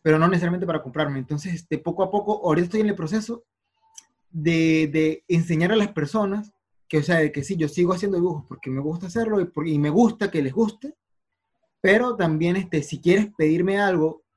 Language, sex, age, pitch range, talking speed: Spanish, male, 30-49, 155-190 Hz, 210 wpm